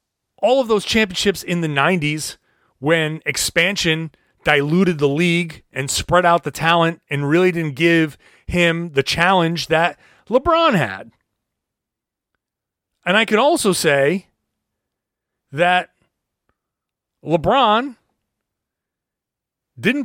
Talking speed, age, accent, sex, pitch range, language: 105 wpm, 30-49, American, male, 150-220 Hz, English